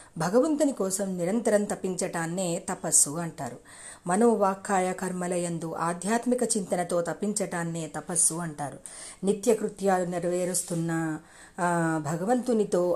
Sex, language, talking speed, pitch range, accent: female, Telugu, 80 wpm, 170-210 Hz, native